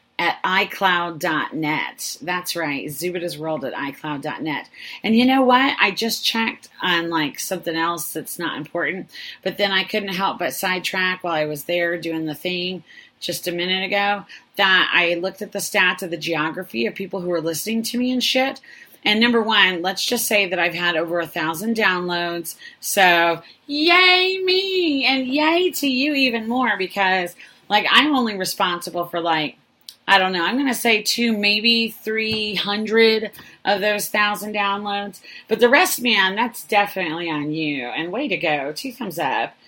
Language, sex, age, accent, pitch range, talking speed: English, female, 30-49, American, 160-215 Hz, 175 wpm